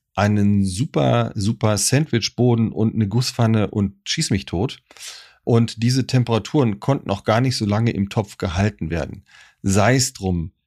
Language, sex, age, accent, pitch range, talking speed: German, male, 40-59, German, 100-130 Hz, 150 wpm